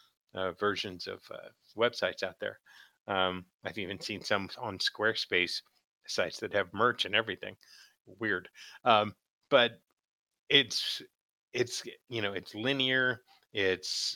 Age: 30-49